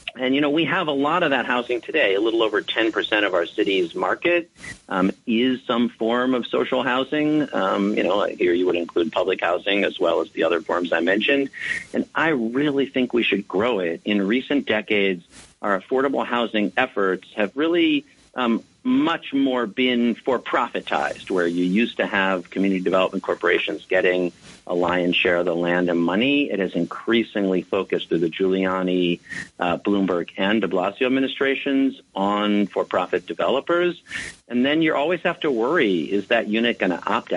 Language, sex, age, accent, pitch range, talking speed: English, male, 40-59, American, 95-145 Hz, 180 wpm